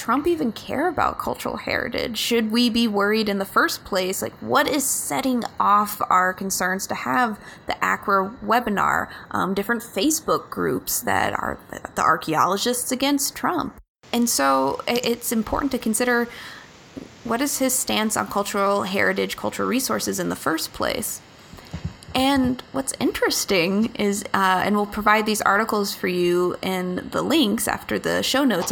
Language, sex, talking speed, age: English, female, 155 wpm, 20-39